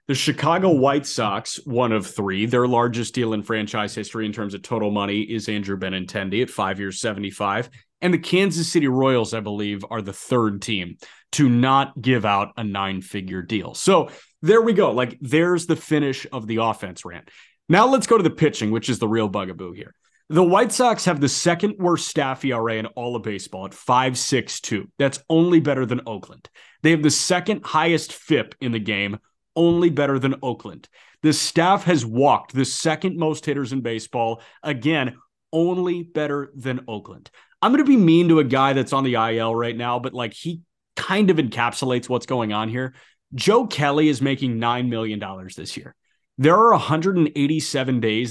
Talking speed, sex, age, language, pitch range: 190 wpm, male, 30-49, English, 110-155 Hz